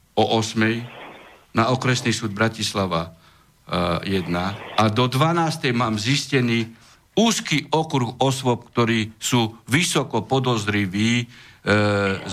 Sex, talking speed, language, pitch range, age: male, 90 wpm, Slovak, 105-145 Hz, 60-79